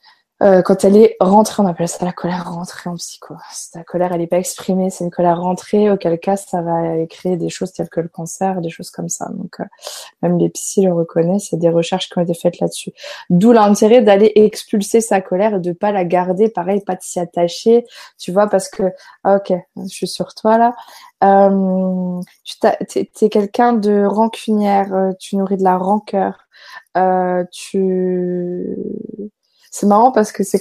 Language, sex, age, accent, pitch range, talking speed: French, female, 20-39, French, 185-220 Hz, 190 wpm